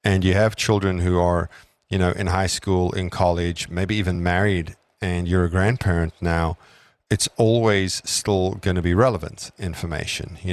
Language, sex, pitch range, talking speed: English, male, 85-100 Hz, 170 wpm